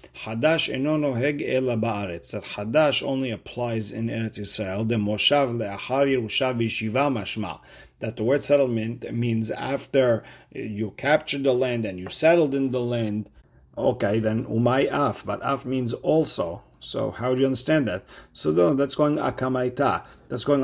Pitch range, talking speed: 105-130 Hz, 135 wpm